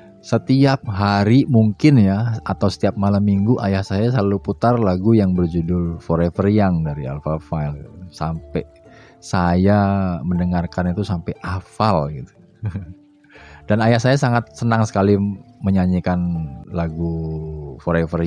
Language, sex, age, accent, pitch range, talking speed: English, male, 30-49, Indonesian, 85-105 Hz, 120 wpm